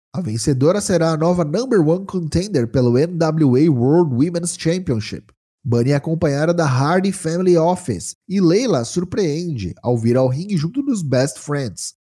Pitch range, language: 130-180 Hz, Portuguese